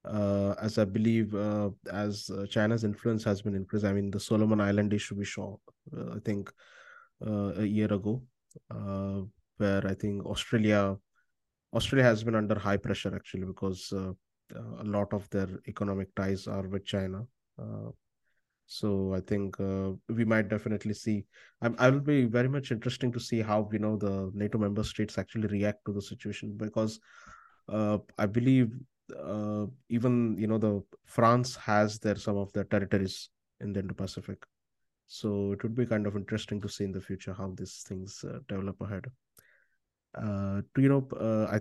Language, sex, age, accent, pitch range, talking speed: English, male, 20-39, Indian, 100-115 Hz, 175 wpm